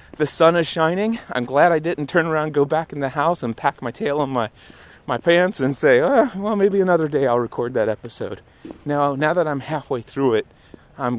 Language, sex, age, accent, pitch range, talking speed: English, male, 30-49, American, 130-175 Hz, 225 wpm